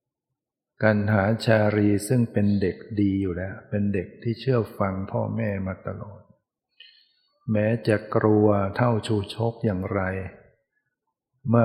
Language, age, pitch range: Thai, 60-79, 100-115 Hz